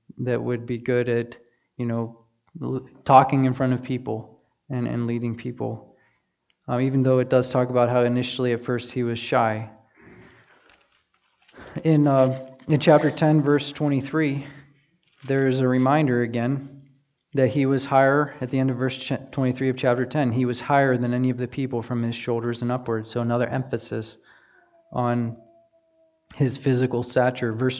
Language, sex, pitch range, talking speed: English, male, 120-140 Hz, 165 wpm